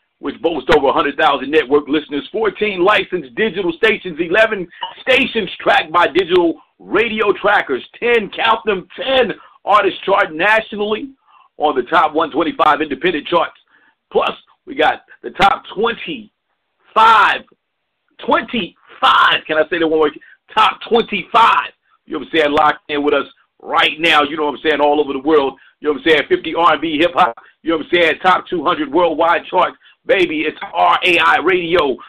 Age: 50-69